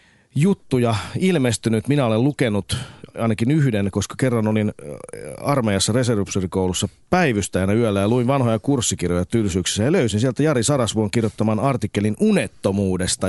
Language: Finnish